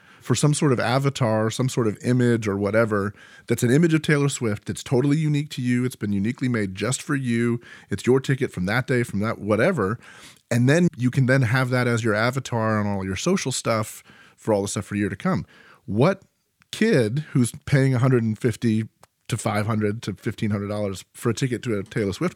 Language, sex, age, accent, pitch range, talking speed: English, male, 30-49, American, 105-135 Hz, 210 wpm